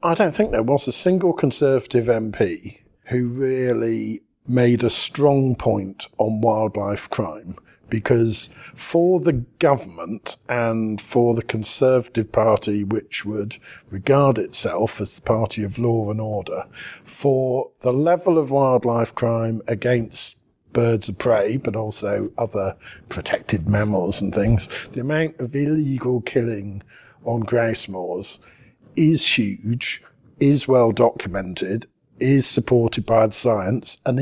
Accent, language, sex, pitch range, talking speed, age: British, English, male, 110-140 Hz, 130 wpm, 50-69